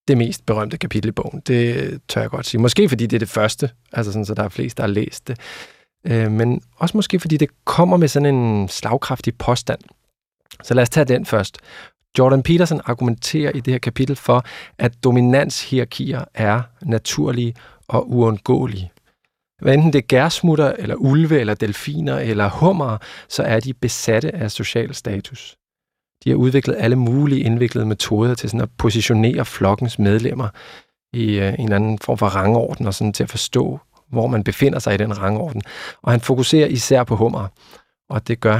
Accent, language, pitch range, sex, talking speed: native, Danish, 110-130 Hz, male, 185 wpm